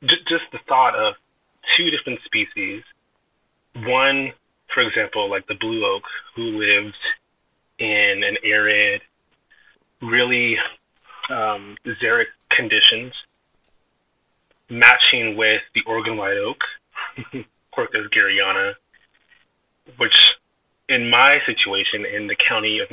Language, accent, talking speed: English, American, 100 wpm